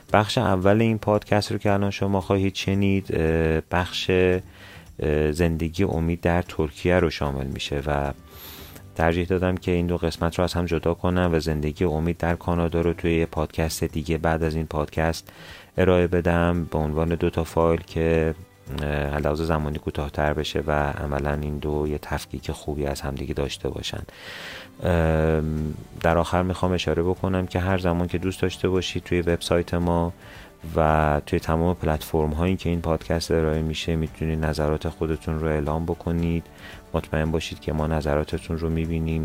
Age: 30-49